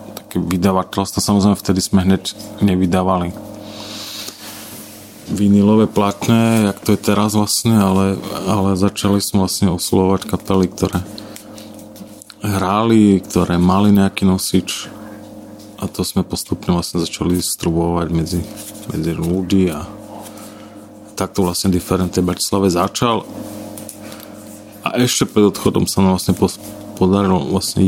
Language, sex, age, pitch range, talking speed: Slovak, male, 30-49, 95-105 Hz, 115 wpm